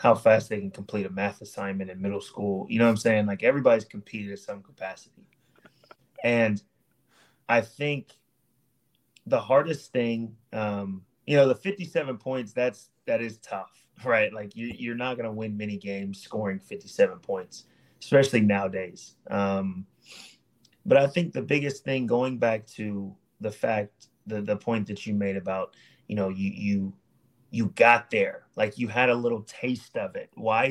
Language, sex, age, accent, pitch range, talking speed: English, male, 30-49, American, 100-125 Hz, 170 wpm